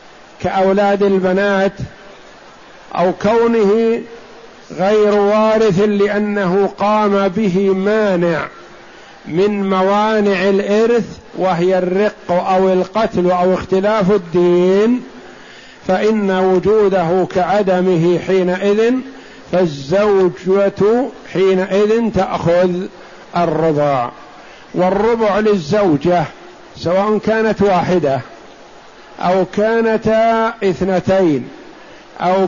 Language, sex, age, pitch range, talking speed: Arabic, male, 50-69, 180-210 Hz, 70 wpm